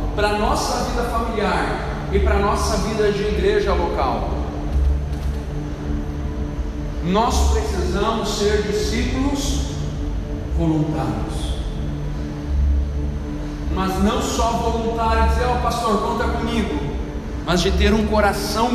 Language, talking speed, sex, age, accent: Portuguese, 100 wpm, male, 40-59, Brazilian